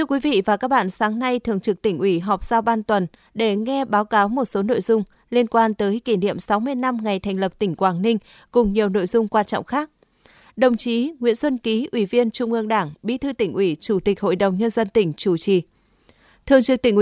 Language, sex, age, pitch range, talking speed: Vietnamese, female, 20-39, 205-245 Hz, 245 wpm